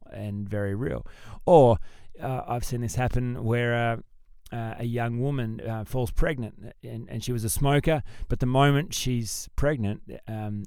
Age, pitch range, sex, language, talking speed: 30-49, 95-125 Hz, male, English, 170 wpm